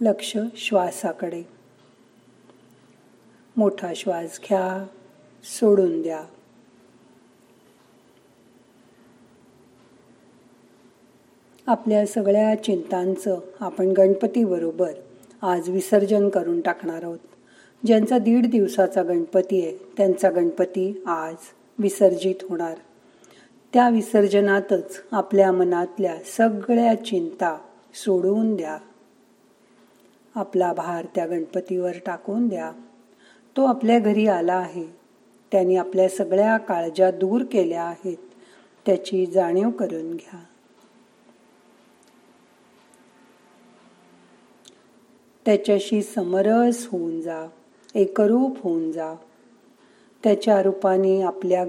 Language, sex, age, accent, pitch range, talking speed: Marathi, female, 40-59, native, 175-210 Hz, 80 wpm